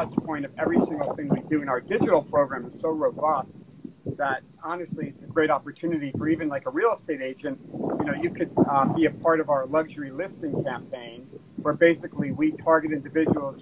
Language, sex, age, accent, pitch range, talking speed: English, male, 40-59, American, 145-170 Hz, 200 wpm